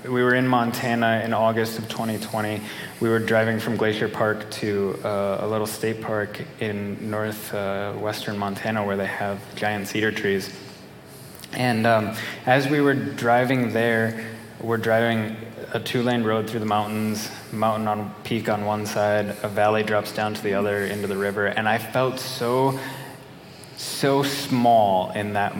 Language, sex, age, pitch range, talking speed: English, male, 20-39, 105-115 Hz, 160 wpm